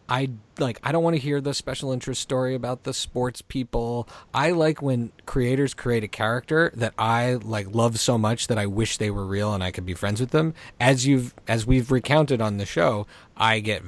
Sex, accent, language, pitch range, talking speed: male, American, English, 95-130 Hz, 220 wpm